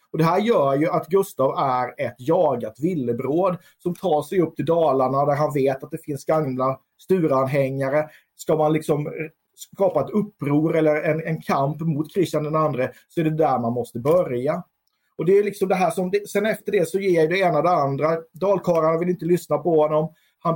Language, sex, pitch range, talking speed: Swedish, male, 135-165 Hz, 205 wpm